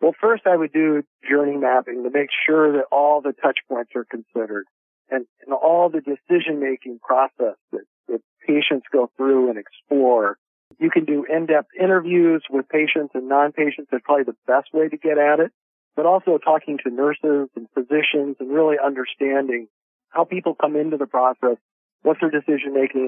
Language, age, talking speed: English, 50-69, 175 wpm